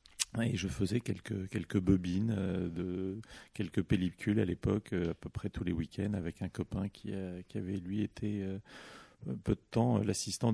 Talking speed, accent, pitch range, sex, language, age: 175 wpm, French, 90-105 Hz, male, French, 40-59